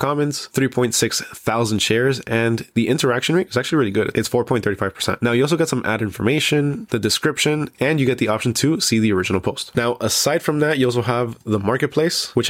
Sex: male